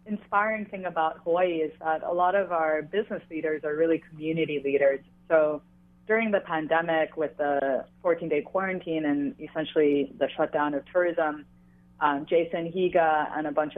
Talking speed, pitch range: 155 wpm, 140-165 Hz